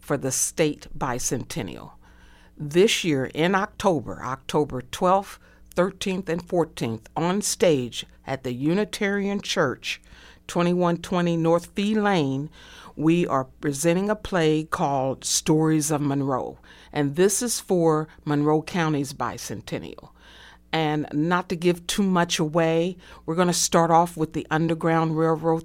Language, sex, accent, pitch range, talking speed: English, female, American, 145-175 Hz, 130 wpm